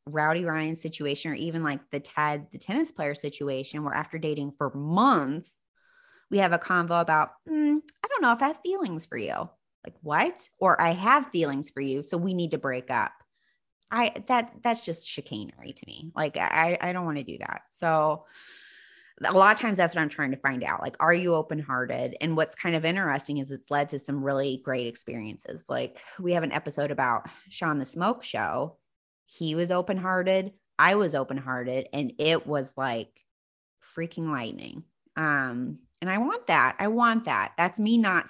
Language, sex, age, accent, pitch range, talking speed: English, female, 20-39, American, 140-180 Hz, 195 wpm